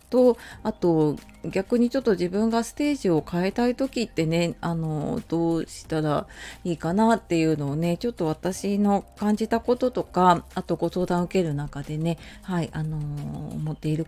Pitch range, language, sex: 155-230 Hz, Japanese, female